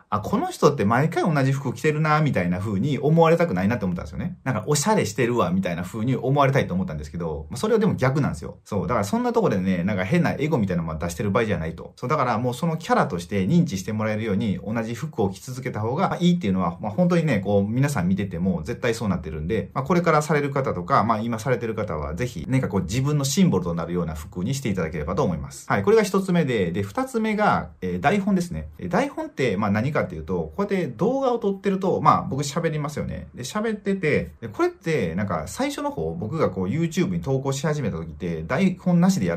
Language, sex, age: Japanese, male, 30-49